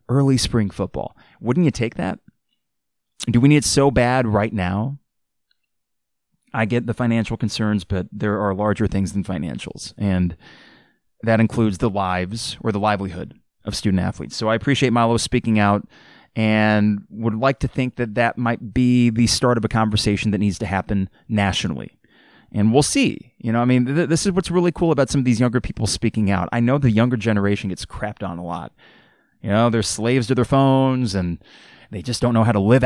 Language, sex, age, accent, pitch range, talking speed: English, male, 30-49, American, 100-120 Hz, 195 wpm